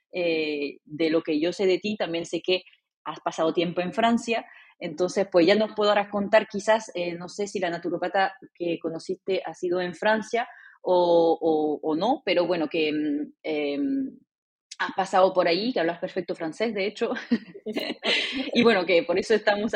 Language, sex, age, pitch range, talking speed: Spanish, female, 20-39, 185-240 Hz, 180 wpm